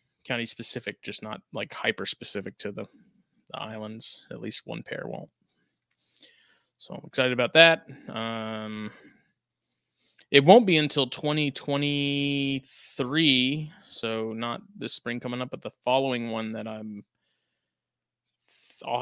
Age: 20-39